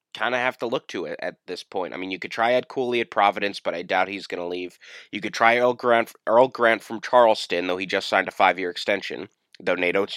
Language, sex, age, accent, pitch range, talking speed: English, male, 20-39, American, 105-140 Hz, 265 wpm